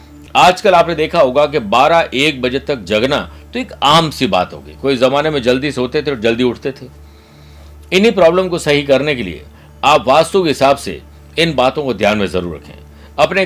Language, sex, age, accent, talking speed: Hindi, male, 60-79, native, 205 wpm